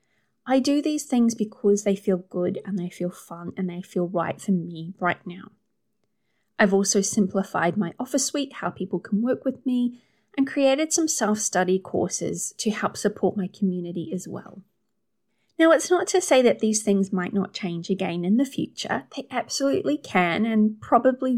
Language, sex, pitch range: English, female, 185-230 Hz